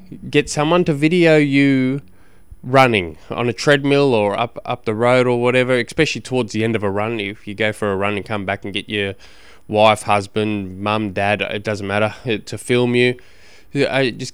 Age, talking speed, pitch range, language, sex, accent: 20-39, 195 wpm, 110-135 Hz, English, male, Australian